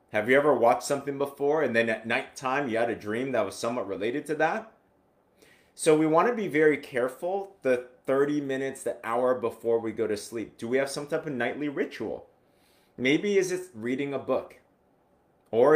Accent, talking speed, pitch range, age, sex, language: American, 200 wpm, 120-145 Hz, 30-49, male, English